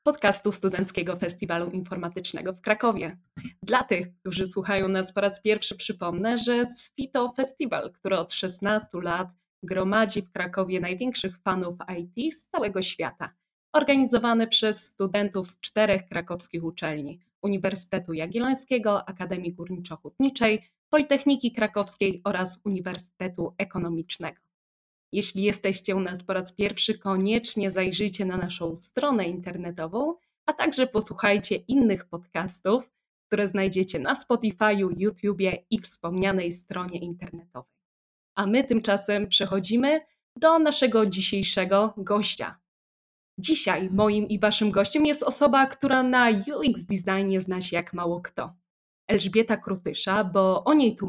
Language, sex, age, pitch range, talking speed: Polish, female, 20-39, 185-225 Hz, 125 wpm